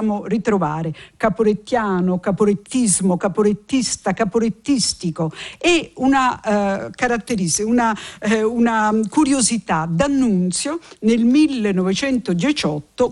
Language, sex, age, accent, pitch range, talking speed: Italian, female, 50-69, native, 185-250 Hz, 75 wpm